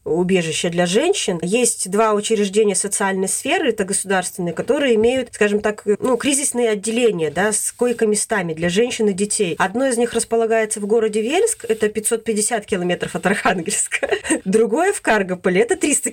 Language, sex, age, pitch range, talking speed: Russian, female, 20-39, 190-230 Hz, 155 wpm